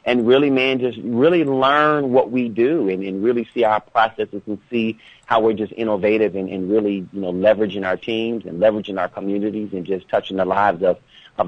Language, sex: English, male